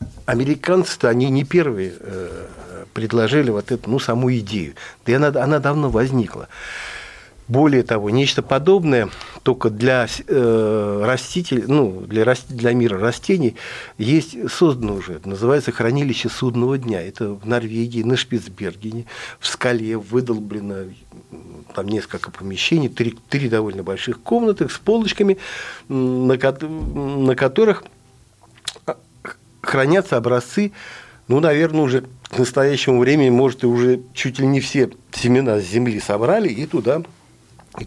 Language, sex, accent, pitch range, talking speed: Russian, male, native, 115-155 Hz, 125 wpm